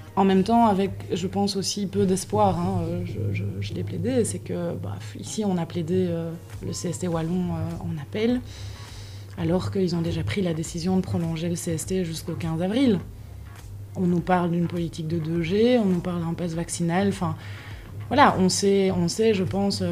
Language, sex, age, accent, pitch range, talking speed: French, female, 20-39, French, 155-195 Hz, 195 wpm